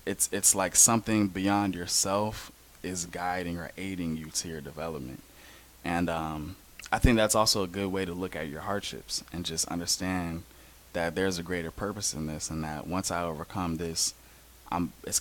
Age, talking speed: 20-39, 180 wpm